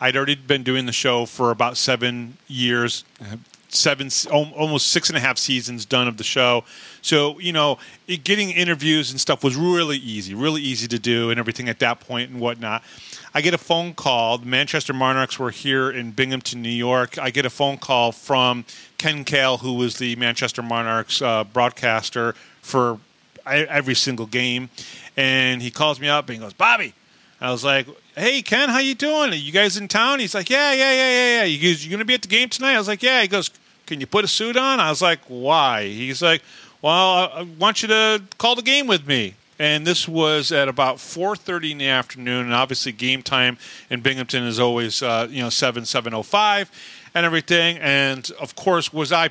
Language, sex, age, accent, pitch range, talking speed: English, male, 30-49, American, 125-170 Hz, 205 wpm